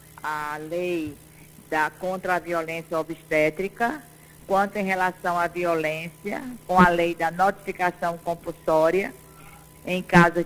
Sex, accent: female, Brazilian